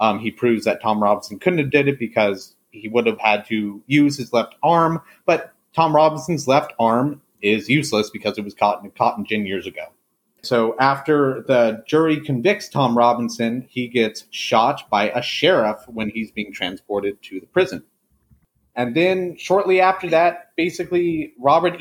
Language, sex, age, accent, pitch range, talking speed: English, male, 30-49, American, 110-155 Hz, 175 wpm